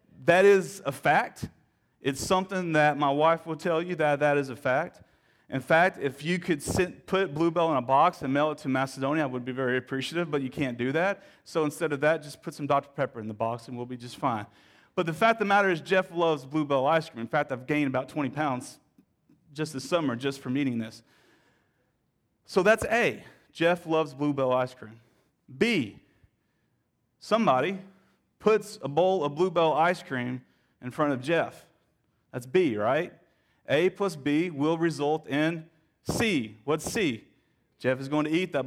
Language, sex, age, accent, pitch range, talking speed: English, male, 30-49, American, 135-175 Hz, 190 wpm